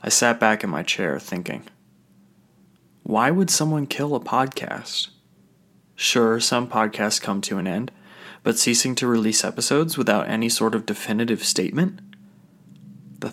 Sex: male